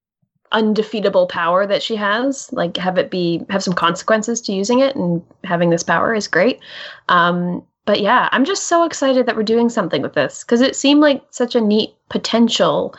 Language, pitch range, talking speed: English, 180-240 Hz, 195 wpm